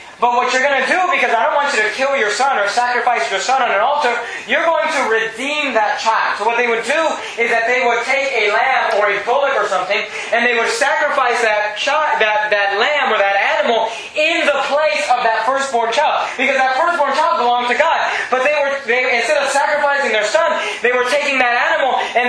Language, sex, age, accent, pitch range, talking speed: English, male, 20-39, American, 230-295 Hz, 230 wpm